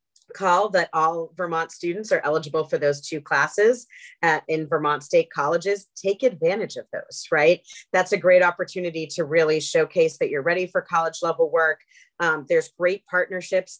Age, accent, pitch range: 30-49, American, 155-175 Hz